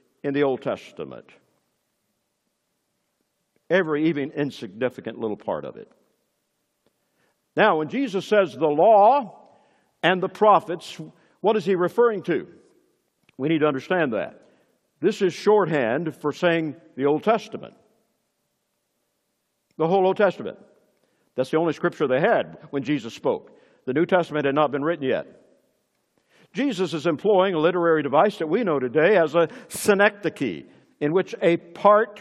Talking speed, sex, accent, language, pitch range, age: 140 wpm, male, American, English, 150-200 Hz, 60-79